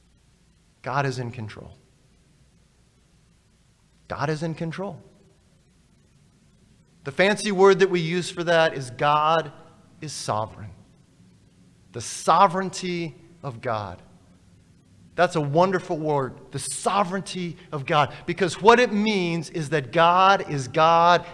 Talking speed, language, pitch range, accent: 115 wpm, English, 145-215 Hz, American